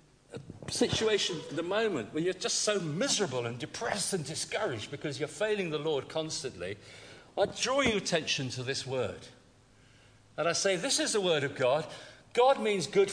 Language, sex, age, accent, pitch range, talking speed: English, male, 50-69, British, 130-195 Hz, 175 wpm